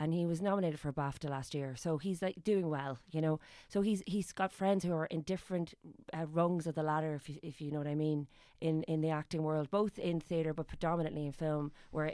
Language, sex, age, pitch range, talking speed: English, female, 30-49, 145-165 Hz, 250 wpm